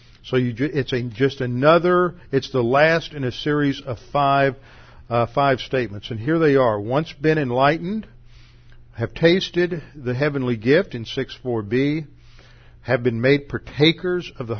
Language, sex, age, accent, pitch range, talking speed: English, male, 50-69, American, 120-140 Hz, 150 wpm